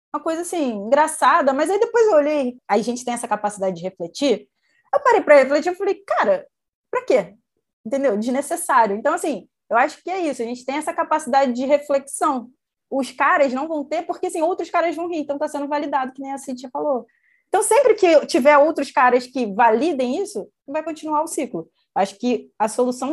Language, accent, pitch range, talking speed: Portuguese, Brazilian, 225-300 Hz, 210 wpm